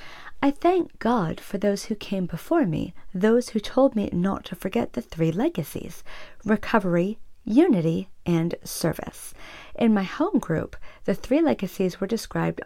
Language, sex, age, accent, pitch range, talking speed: English, female, 40-59, American, 195-275 Hz, 150 wpm